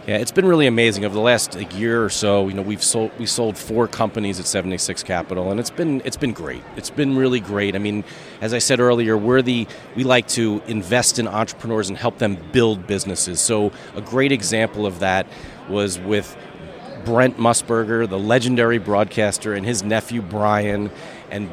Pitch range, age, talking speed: 105-125 Hz, 40-59, 195 wpm